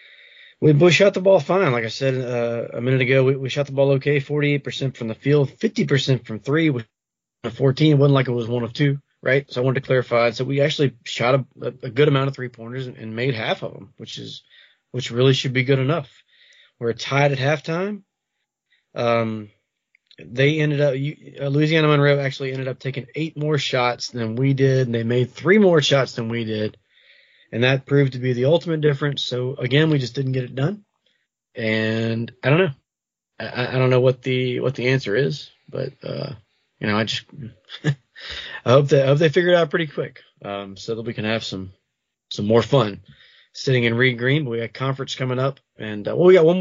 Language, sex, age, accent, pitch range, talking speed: English, male, 20-39, American, 120-145 Hz, 220 wpm